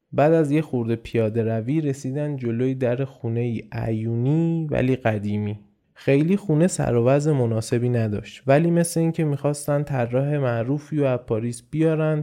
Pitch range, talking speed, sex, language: 115-155 Hz, 140 wpm, male, Persian